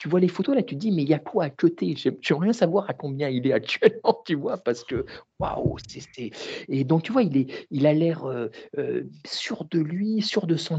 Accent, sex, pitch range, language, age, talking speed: French, male, 135-200 Hz, French, 50-69, 280 wpm